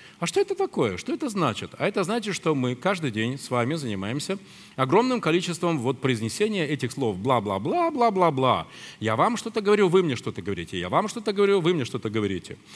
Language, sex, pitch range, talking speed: Russian, male, 120-190 Hz, 195 wpm